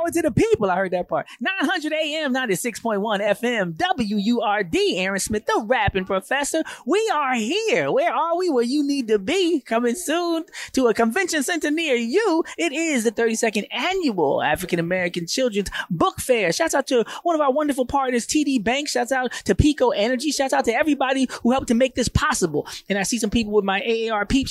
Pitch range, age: 190-275 Hz, 20-39